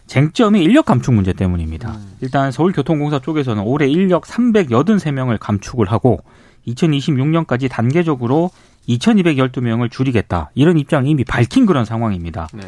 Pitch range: 110-170 Hz